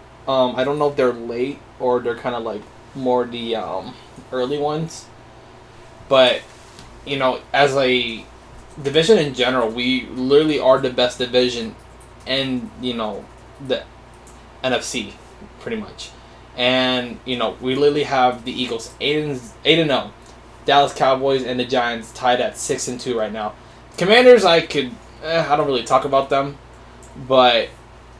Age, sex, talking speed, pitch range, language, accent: 20-39, male, 155 wpm, 115-135 Hz, English, American